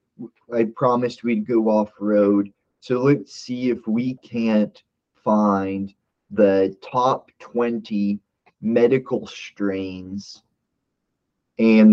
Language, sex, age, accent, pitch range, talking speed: English, male, 30-49, American, 95-115 Hz, 90 wpm